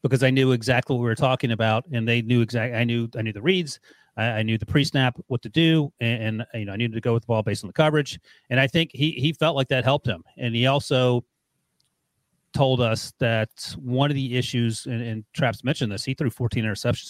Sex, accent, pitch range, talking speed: male, American, 115-140 Hz, 245 wpm